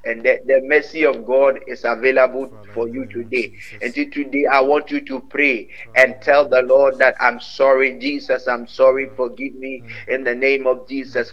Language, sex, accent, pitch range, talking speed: English, male, Jamaican, 135-195 Hz, 185 wpm